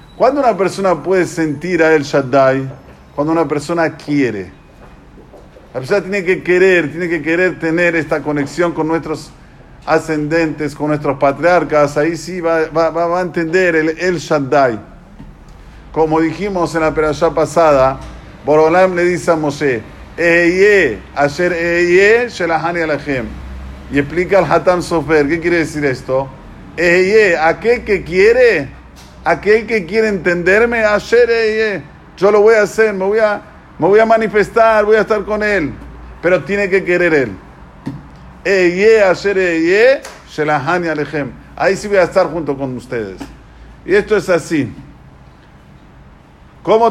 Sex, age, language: male, 50-69, Spanish